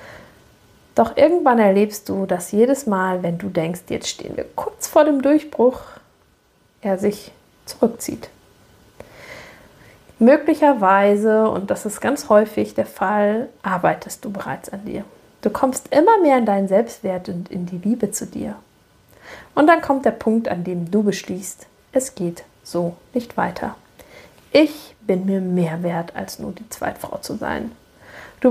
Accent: German